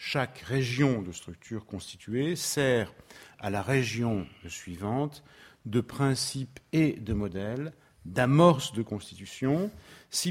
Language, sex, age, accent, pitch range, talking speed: French, male, 50-69, French, 105-140 Hz, 110 wpm